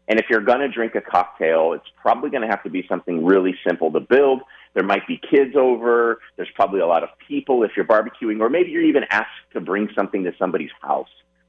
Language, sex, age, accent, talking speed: English, male, 30-49, American, 235 wpm